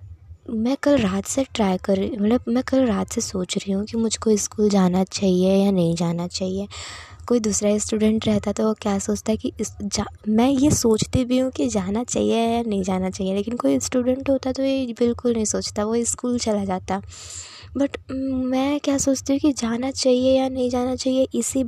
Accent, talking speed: native, 195 wpm